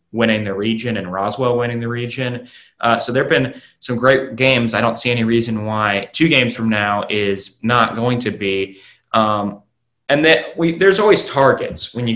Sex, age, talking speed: male, 20-39, 185 wpm